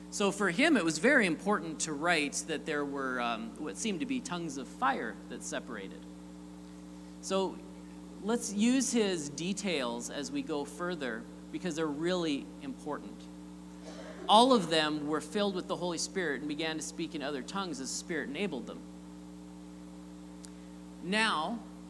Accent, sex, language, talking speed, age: American, male, English, 155 wpm, 40-59